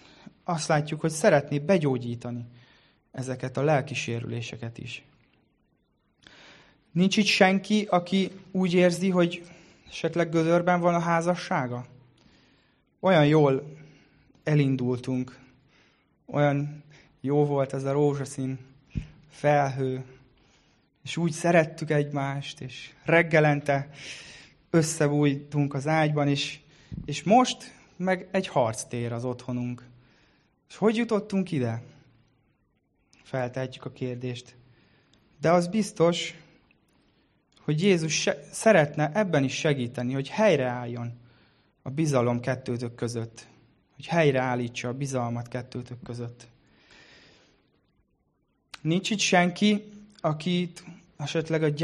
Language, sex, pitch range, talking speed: Hungarian, male, 125-165 Hz, 95 wpm